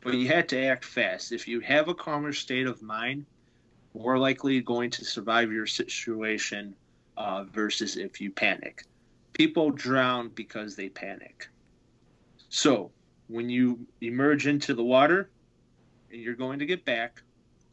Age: 30-49